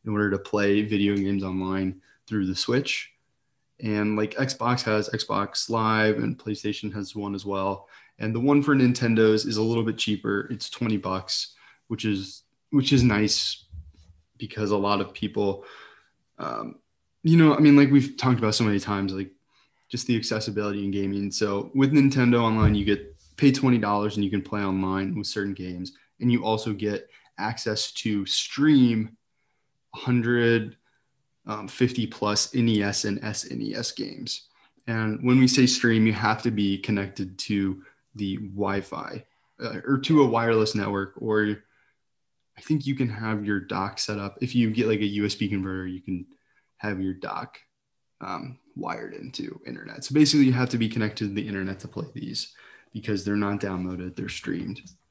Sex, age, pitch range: male, 20-39, 100-120 Hz